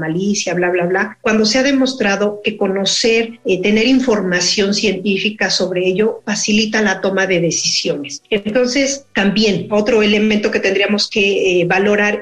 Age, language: 40-59, Spanish